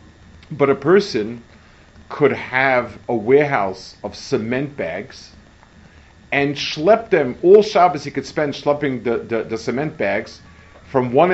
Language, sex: English, male